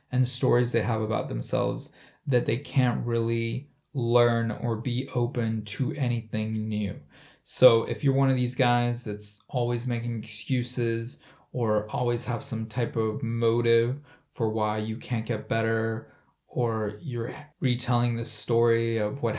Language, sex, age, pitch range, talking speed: English, male, 20-39, 115-135 Hz, 150 wpm